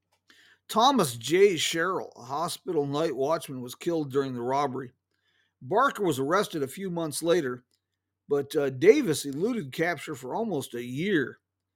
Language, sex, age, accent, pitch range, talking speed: English, male, 50-69, American, 130-185 Hz, 145 wpm